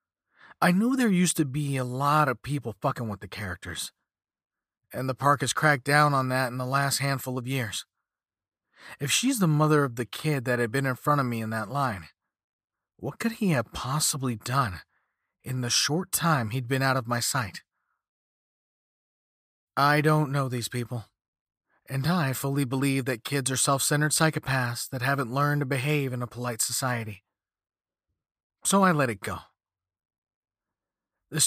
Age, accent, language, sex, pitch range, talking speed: 40-59, American, English, male, 115-150 Hz, 170 wpm